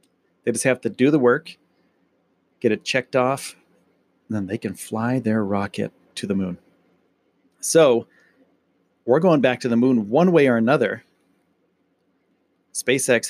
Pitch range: 110-150 Hz